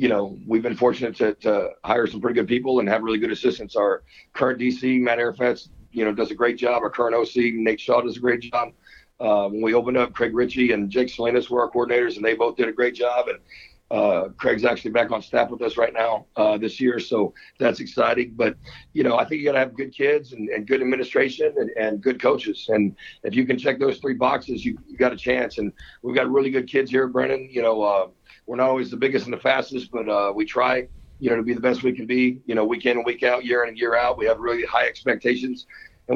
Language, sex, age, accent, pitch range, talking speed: English, male, 50-69, American, 115-130 Hz, 260 wpm